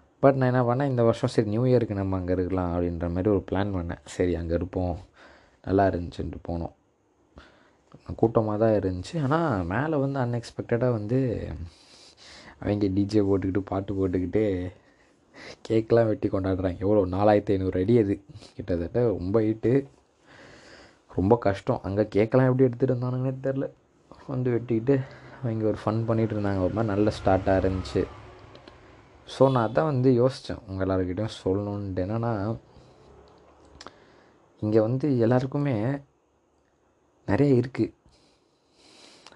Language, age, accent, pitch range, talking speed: Tamil, 20-39, native, 95-125 Hz, 125 wpm